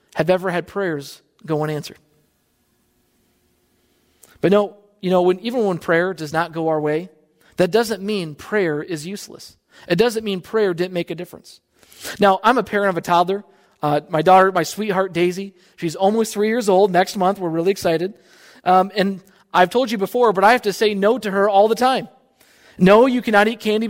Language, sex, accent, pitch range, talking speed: English, male, American, 175-215 Hz, 195 wpm